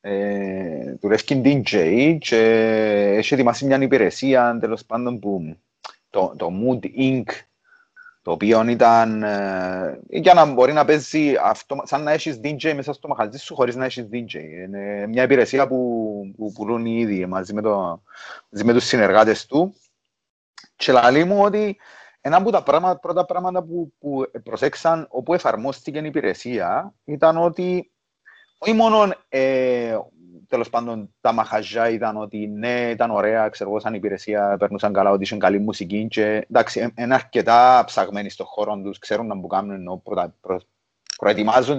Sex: male